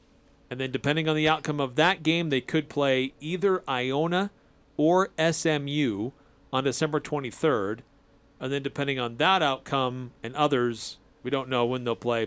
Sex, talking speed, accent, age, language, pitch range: male, 160 wpm, American, 40-59, English, 125-155 Hz